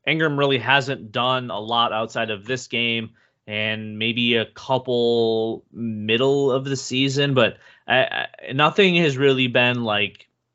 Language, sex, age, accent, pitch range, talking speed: English, male, 20-39, American, 115-135 Hz, 150 wpm